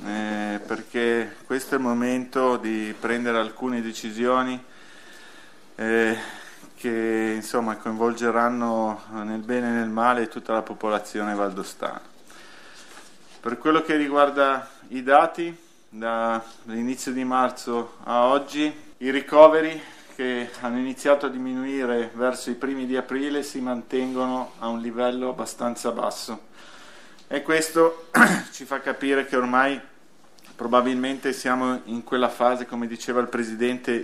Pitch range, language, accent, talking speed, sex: 115-135 Hz, Italian, native, 120 wpm, male